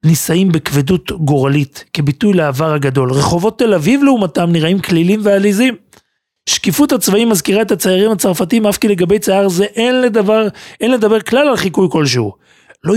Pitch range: 140-195 Hz